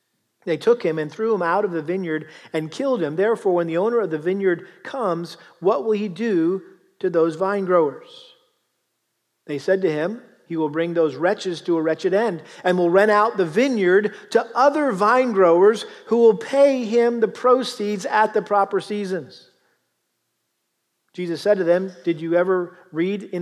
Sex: male